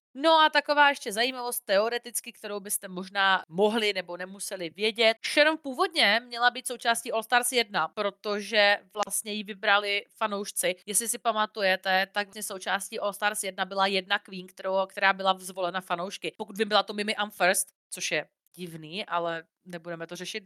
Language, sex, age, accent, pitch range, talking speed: Czech, female, 30-49, native, 190-245 Hz, 165 wpm